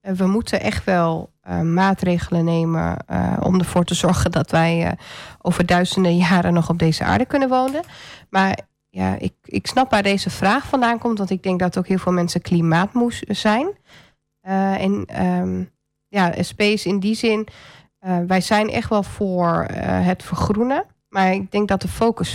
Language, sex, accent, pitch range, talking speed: Dutch, female, Dutch, 170-200 Hz, 180 wpm